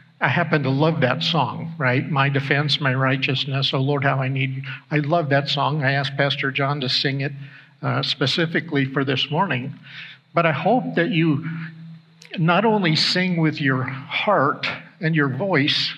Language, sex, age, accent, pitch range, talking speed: English, male, 50-69, American, 140-165 Hz, 175 wpm